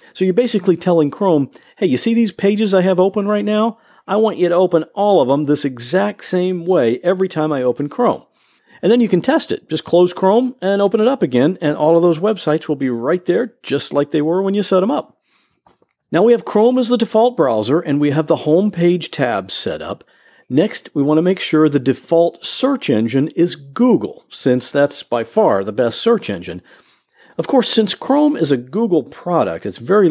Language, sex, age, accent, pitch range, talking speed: English, male, 50-69, American, 140-210 Hz, 220 wpm